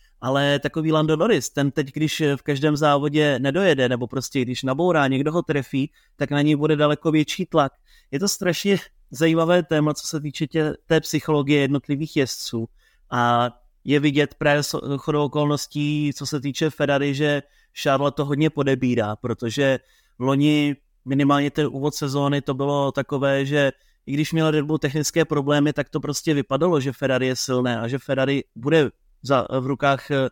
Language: Czech